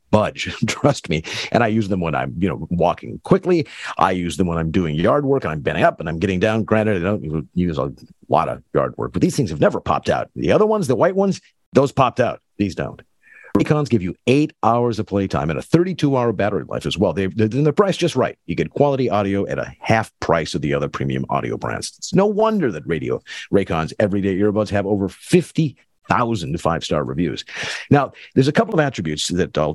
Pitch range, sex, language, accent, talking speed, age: 95-135 Hz, male, English, American, 225 wpm, 50-69